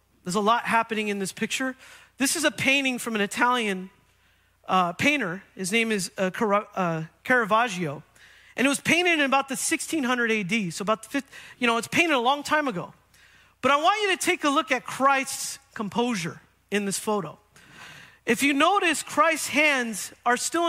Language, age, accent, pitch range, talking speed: English, 40-59, American, 200-285 Hz, 185 wpm